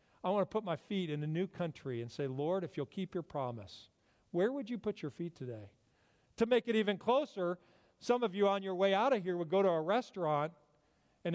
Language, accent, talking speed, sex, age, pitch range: English, American, 240 wpm, male, 50-69, 155-225 Hz